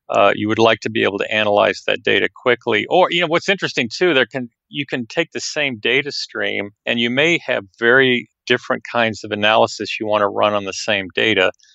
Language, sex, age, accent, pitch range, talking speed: English, male, 40-59, American, 105-120 Hz, 225 wpm